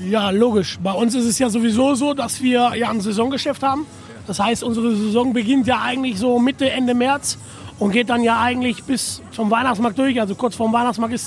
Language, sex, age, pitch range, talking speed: German, male, 30-49, 235-260 Hz, 215 wpm